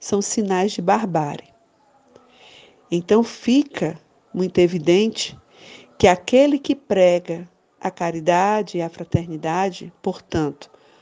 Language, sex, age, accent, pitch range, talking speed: Portuguese, female, 50-69, Brazilian, 165-210 Hz, 100 wpm